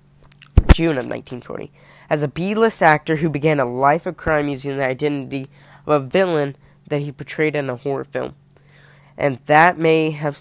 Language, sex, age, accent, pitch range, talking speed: English, female, 20-39, American, 140-170 Hz, 175 wpm